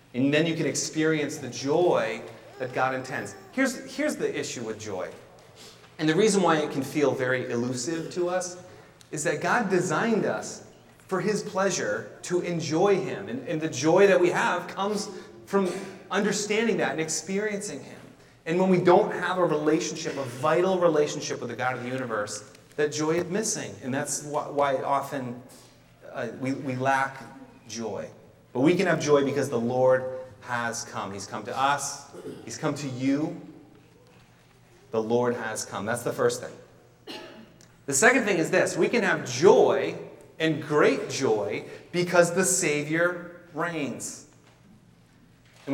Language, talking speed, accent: English, 165 wpm, American